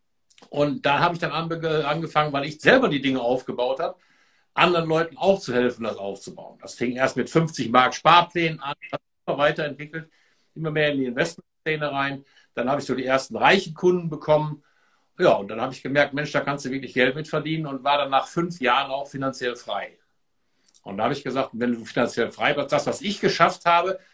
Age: 60-79